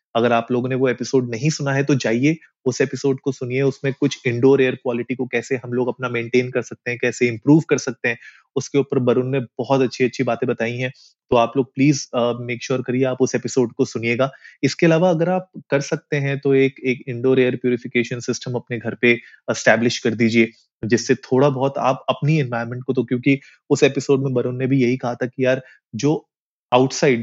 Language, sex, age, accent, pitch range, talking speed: Hindi, male, 30-49, native, 120-135 Hz, 95 wpm